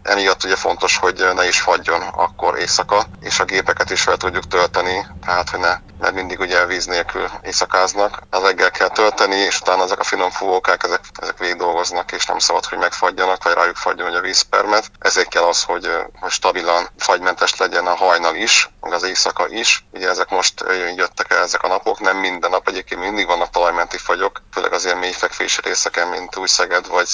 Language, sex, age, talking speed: Hungarian, male, 30-49, 190 wpm